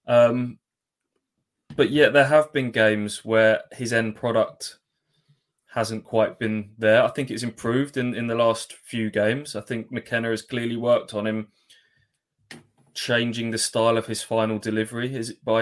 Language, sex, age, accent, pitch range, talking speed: English, male, 20-39, British, 105-115 Hz, 160 wpm